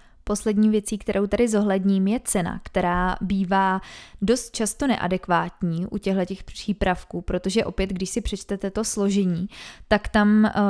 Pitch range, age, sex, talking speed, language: 190-215 Hz, 20-39, female, 135 wpm, Czech